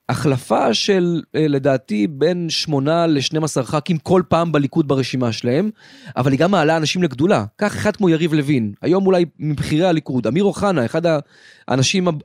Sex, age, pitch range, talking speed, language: male, 30-49, 140-185 Hz, 155 wpm, Hebrew